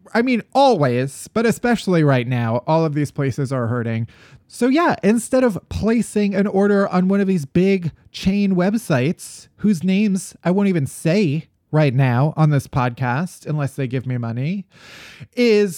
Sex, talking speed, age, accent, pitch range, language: male, 165 wpm, 30-49, American, 140-220 Hz, English